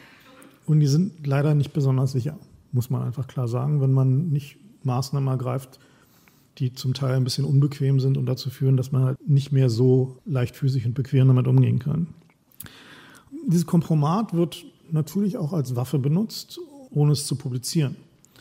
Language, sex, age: German, male, 40-59